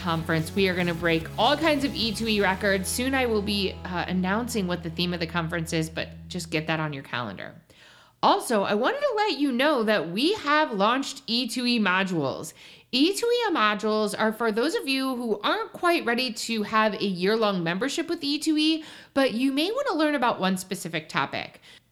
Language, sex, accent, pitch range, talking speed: English, female, American, 180-270 Hz, 195 wpm